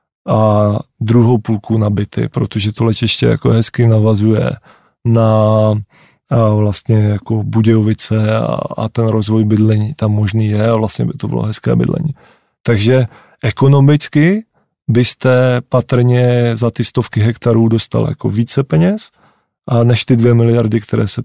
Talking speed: 140 wpm